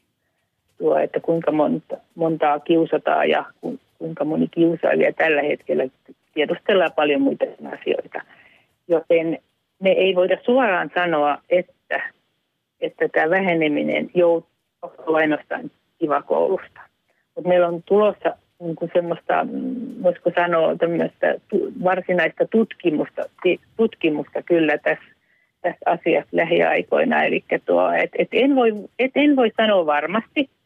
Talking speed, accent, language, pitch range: 100 wpm, native, Finnish, 165-215 Hz